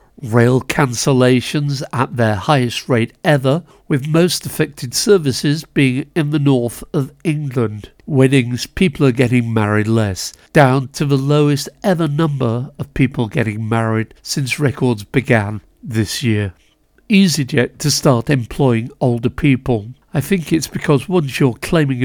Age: 60-79